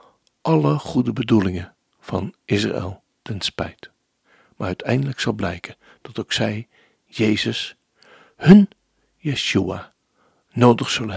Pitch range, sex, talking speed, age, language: 105-140 Hz, male, 100 wpm, 60-79, Dutch